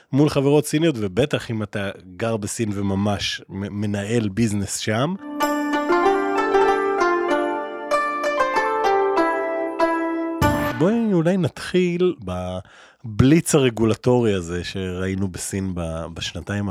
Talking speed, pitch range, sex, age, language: 75 wpm, 105-145 Hz, male, 20-39, Hebrew